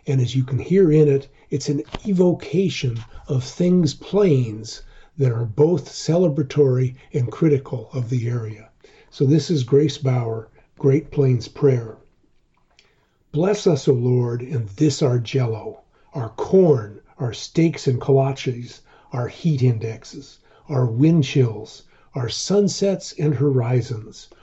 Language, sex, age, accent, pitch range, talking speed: English, male, 50-69, American, 125-150 Hz, 135 wpm